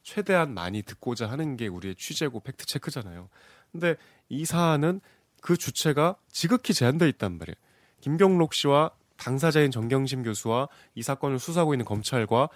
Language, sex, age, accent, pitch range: Korean, male, 30-49, native, 110-160 Hz